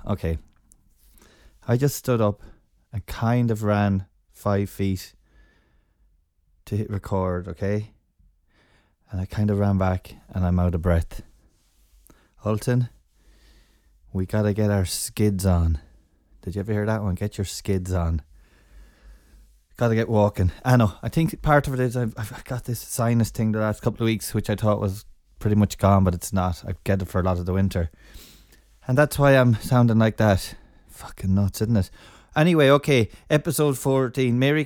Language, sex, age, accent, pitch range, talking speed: English, male, 20-39, Irish, 90-115 Hz, 175 wpm